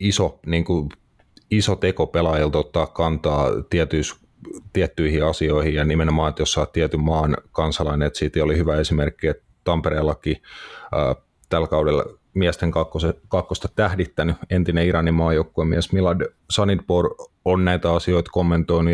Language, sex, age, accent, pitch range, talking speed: Finnish, male, 30-49, native, 80-85 Hz, 125 wpm